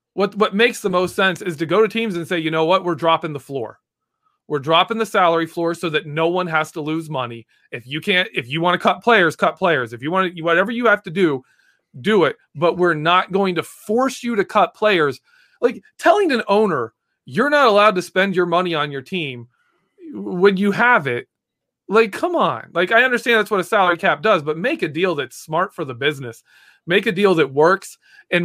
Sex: male